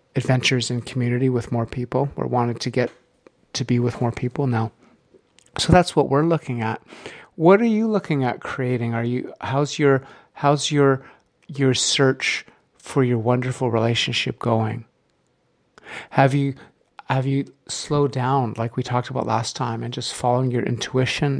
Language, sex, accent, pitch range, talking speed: English, male, American, 120-135 Hz, 165 wpm